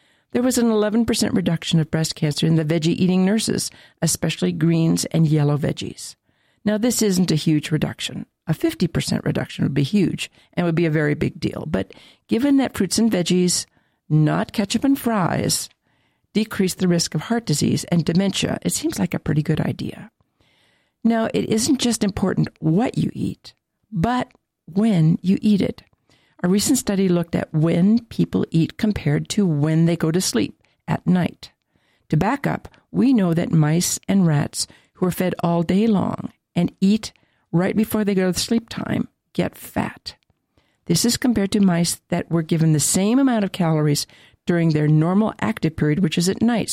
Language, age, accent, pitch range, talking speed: English, 50-69, American, 160-210 Hz, 180 wpm